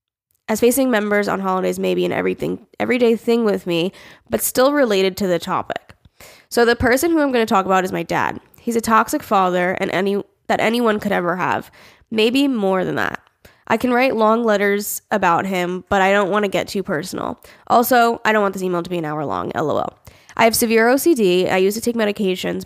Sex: female